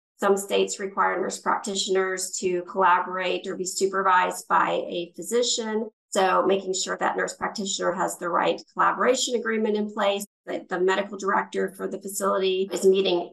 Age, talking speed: 40-59, 160 wpm